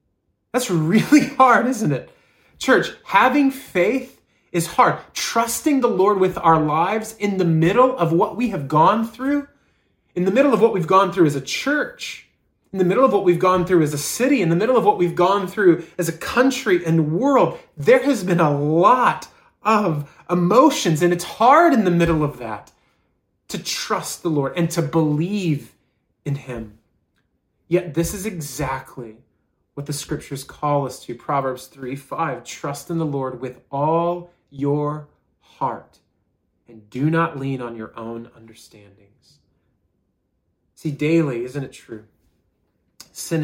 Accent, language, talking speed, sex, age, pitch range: American, English, 165 wpm, male, 30-49, 130-180 Hz